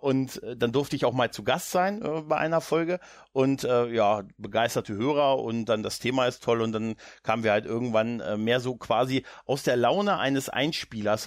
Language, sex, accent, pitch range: German, male, German, 115-145 Hz